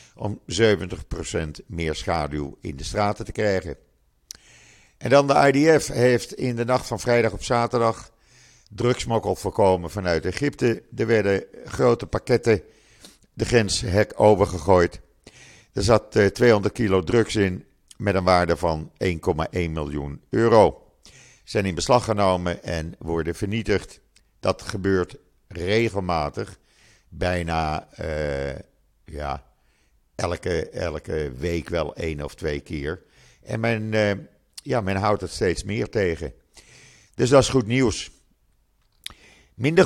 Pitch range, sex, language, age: 85-115 Hz, male, Dutch, 50-69